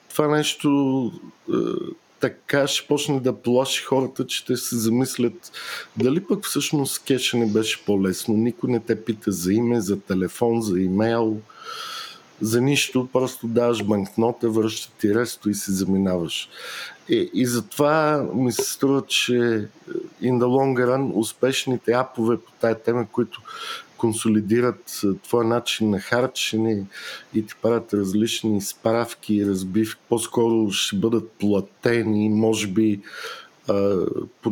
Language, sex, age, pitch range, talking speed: English, male, 50-69, 100-120 Hz, 135 wpm